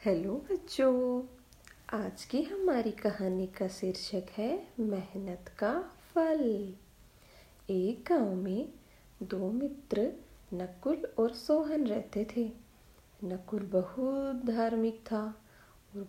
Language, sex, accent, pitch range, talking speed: Hindi, female, native, 190-255 Hz, 100 wpm